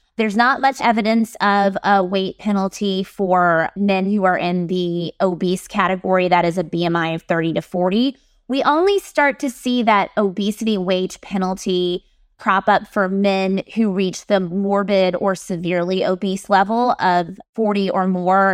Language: English